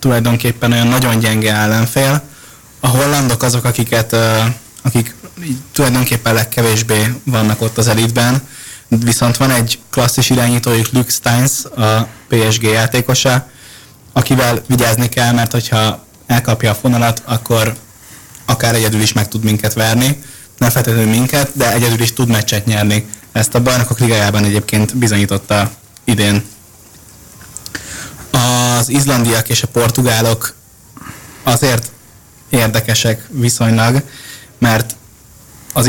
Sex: male